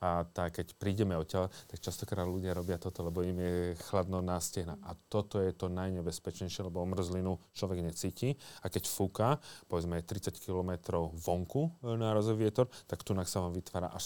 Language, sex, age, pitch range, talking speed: Slovak, male, 30-49, 90-105 Hz, 170 wpm